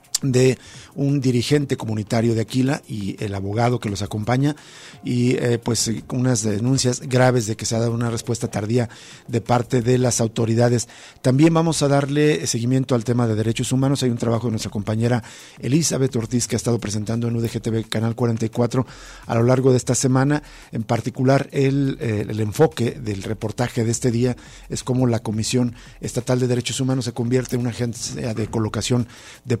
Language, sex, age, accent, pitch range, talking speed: Spanish, male, 50-69, Mexican, 115-130 Hz, 180 wpm